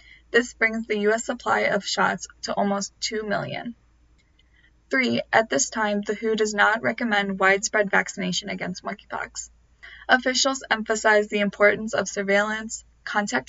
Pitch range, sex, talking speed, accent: 195-225 Hz, female, 140 wpm, American